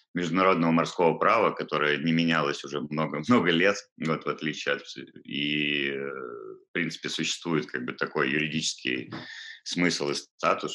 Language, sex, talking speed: Russian, male, 135 wpm